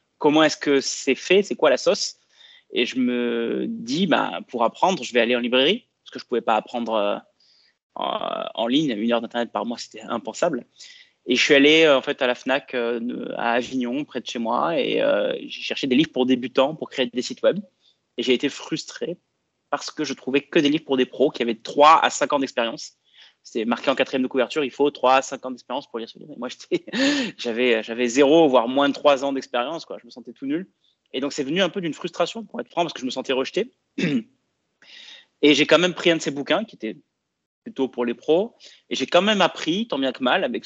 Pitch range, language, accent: 125-175 Hz, French, French